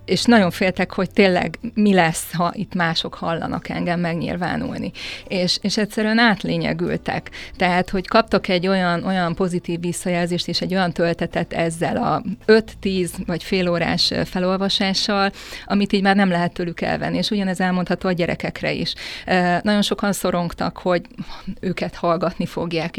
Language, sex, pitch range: Hungarian, female, 175-200 Hz